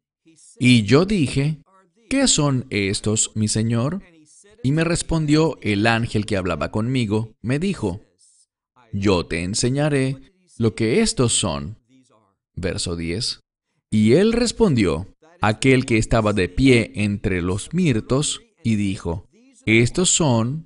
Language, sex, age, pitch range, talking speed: English, male, 40-59, 105-145 Hz, 120 wpm